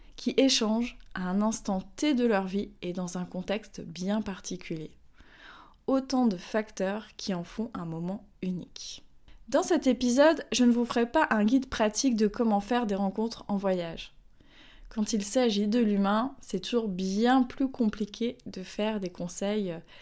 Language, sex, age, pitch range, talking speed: French, female, 20-39, 200-255 Hz, 170 wpm